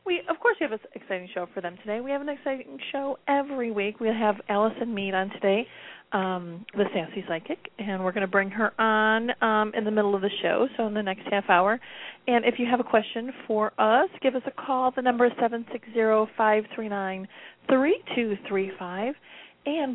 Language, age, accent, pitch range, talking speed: English, 40-59, American, 205-245 Hz, 200 wpm